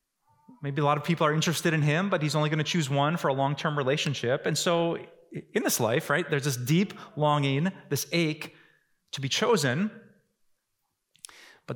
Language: English